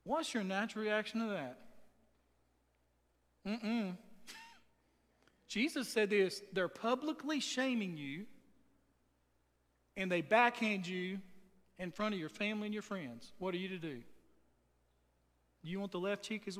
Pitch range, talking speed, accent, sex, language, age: 155-220 Hz, 140 wpm, American, male, English, 40-59